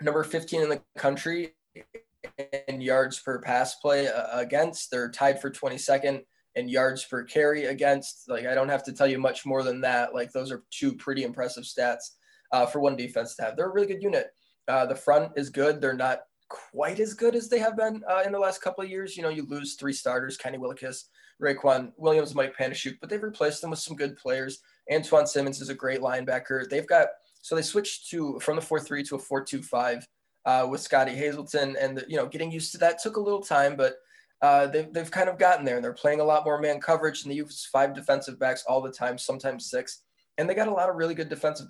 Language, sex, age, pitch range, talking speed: English, male, 20-39, 130-160 Hz, 235 wpm